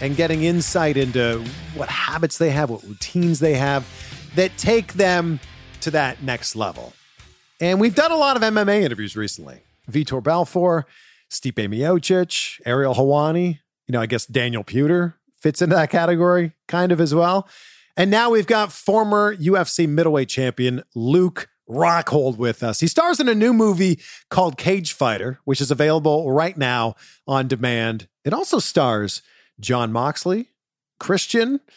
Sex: male